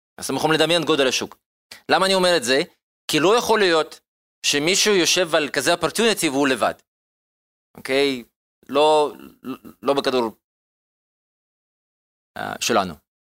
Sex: male